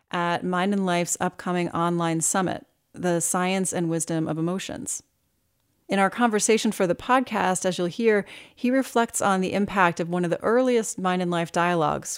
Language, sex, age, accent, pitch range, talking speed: English, female, 30-49, American, 165-200 Hz, 175 wpm